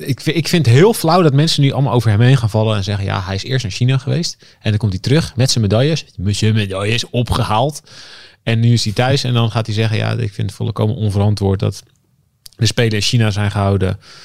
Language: Dutch